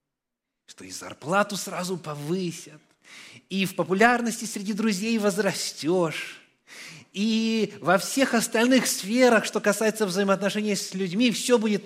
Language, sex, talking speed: Russian, male, 115 wpm